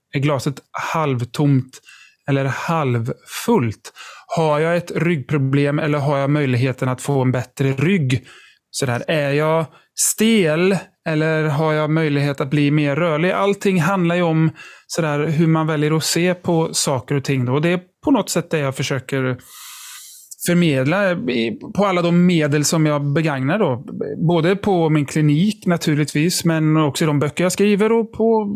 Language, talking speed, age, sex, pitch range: Swedish, 155 wpm, 30-49, male, 140-185 Hz